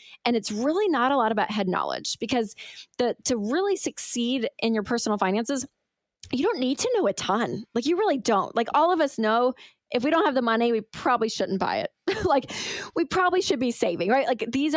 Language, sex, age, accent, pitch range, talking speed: English, female, 20-39, American, 195-245 Hz, 220 wpm